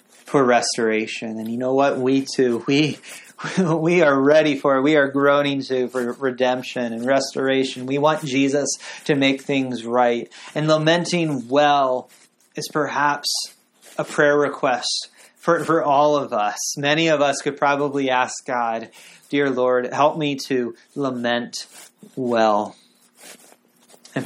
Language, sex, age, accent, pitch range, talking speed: English, male, 30-49, American, 125-155 Hz, 140 wpm